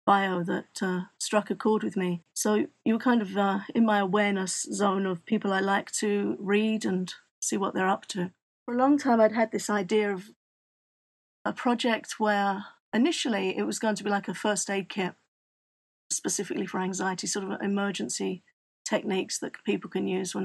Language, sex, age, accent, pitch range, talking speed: English, female, 40-59, British, 190-225 Hz, 190 wpm